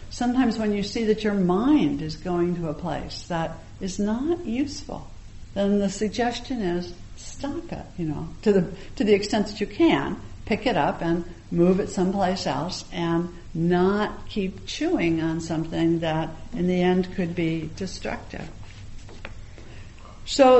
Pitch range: 160-210 Hz